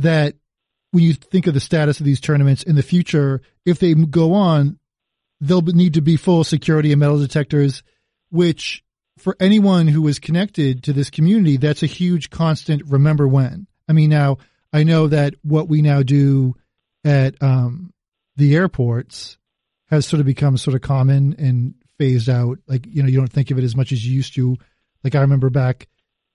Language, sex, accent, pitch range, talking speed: English, male, American, 130-155 Hz, 190 wpm